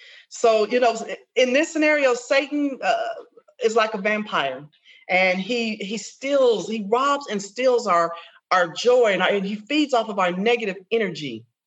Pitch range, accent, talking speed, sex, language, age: 185-245 Hz, American, 170 wpm, female, English, 40-59